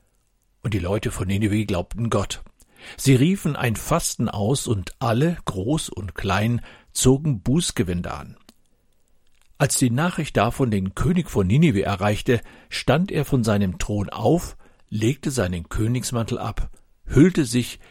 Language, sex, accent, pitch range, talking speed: German, male, German, 100-130 Hz, 135 wpm